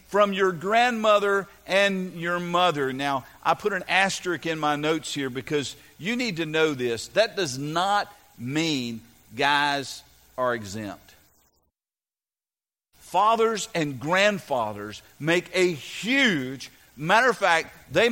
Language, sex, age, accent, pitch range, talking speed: English, male, 50-69, American, 135-185 Hz, 125 wpm